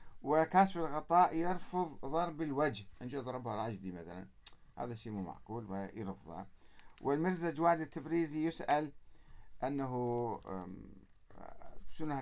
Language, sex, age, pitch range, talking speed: Arabic, male, 50-69, 110-155 Hz, 95 wpm